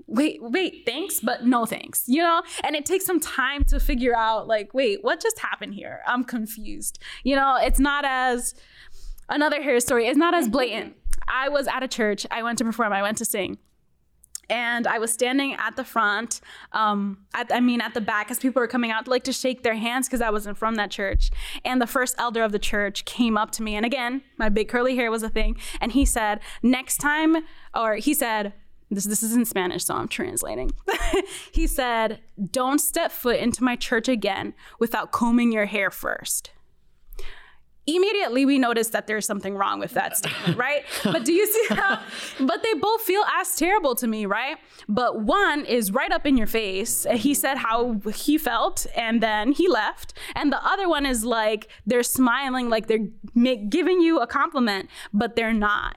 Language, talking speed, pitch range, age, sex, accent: English, 200 wpm, 220-275 Hz, 10-29, female, American